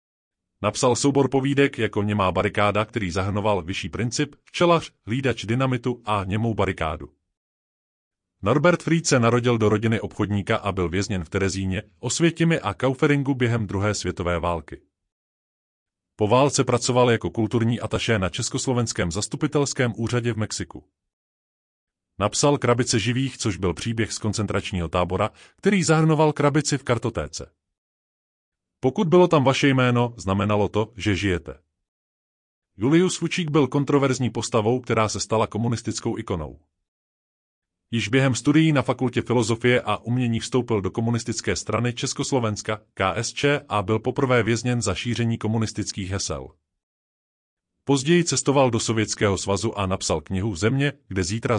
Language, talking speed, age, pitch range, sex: Czech, 130 wpm, 30-49, 95-130 Hz, male